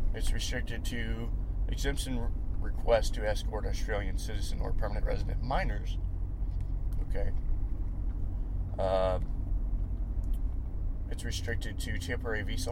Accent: American